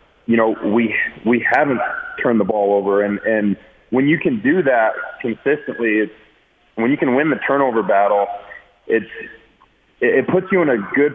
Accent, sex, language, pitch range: American, male, English, 110-120 Hz